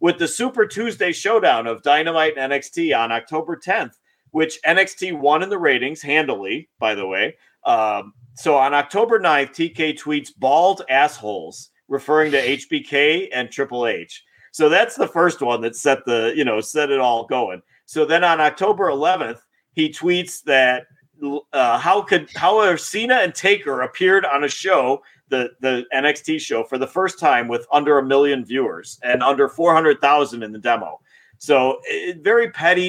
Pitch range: 130-170 Hz